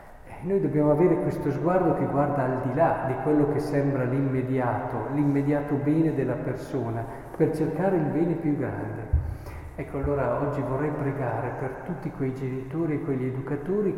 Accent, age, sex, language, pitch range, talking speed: native, 50-69, male, Italian, 130-160 Hz, 160 wpm